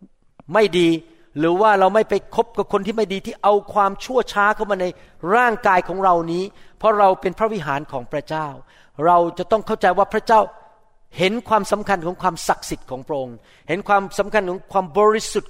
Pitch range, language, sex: 165-210 Hz, Thai, male